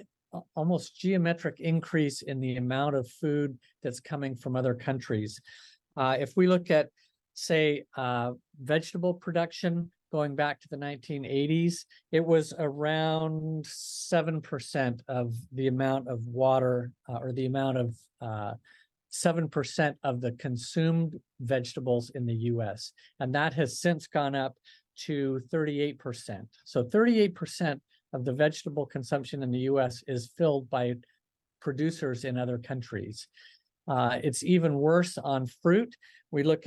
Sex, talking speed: male, 135 wpm